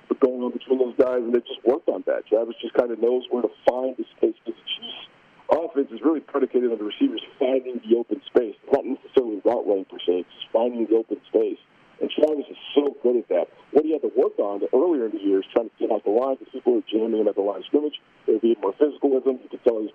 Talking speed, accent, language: 275 wpm, American, English